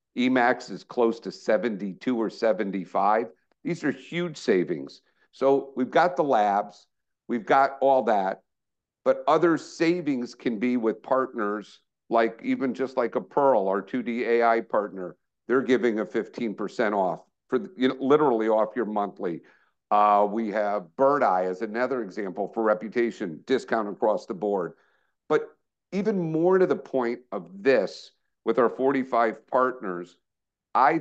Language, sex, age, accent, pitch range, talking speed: English, male, 50-69, American, 110-145 Hz, 155 wpm